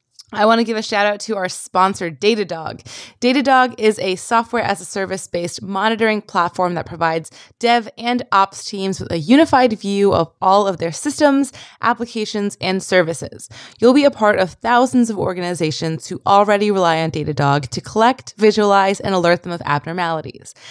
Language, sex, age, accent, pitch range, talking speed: English, female, 20-39, American, 170-220 Hz, 175 wpm